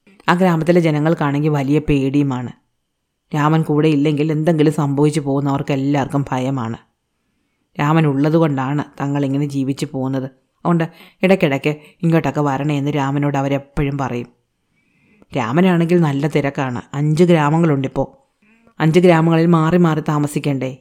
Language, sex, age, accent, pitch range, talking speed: Malayalam, female, 30-49, native, 140-165 Hz, 100 wpm